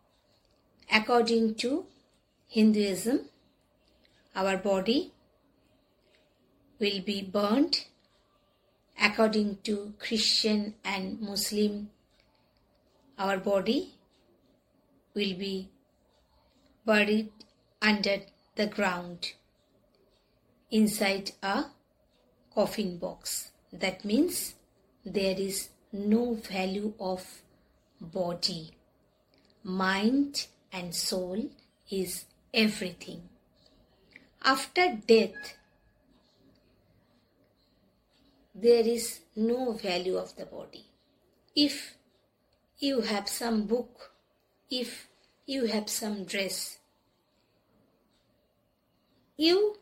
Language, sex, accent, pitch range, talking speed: English, female, Indian, 195-235 Hz, 70 wpm